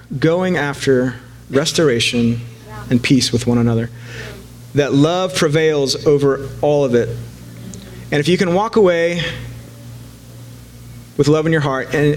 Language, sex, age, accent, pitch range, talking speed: English, male, 30-49, American, 120-150 Hz, 135 wpm